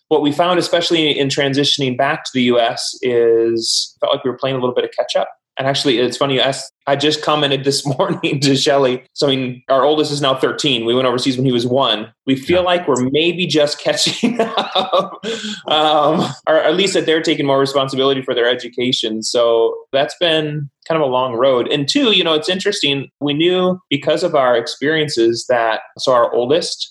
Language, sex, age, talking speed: English, male, 20-39, 205 wpm